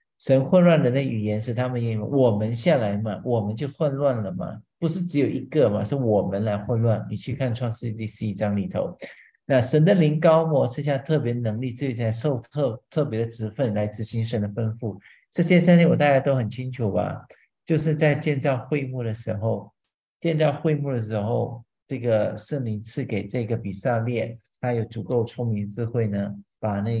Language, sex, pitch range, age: English, male, 110-150 Hz, 50-69